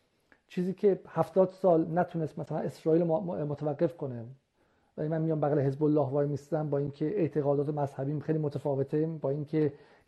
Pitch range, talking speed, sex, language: 145-175 Hz, 145 wpm, male, Persian